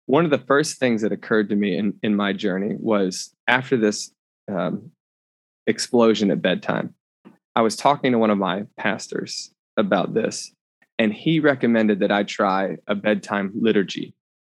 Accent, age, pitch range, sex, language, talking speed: American, 20-39, 100-120 Hz, male, English, 160 wpm